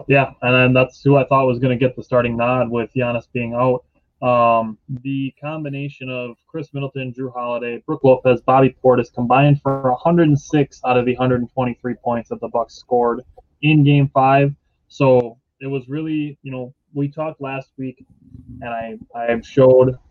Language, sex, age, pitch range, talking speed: English, male, 20-39, 120-140 Hz, 175 wpm